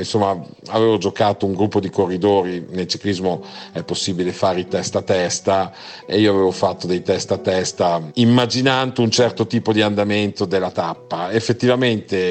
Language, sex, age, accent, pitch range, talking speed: Italian, male, 50-69, native, 85-100 Hz, 160 wpm